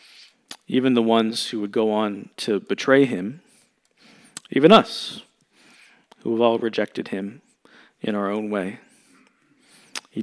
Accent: American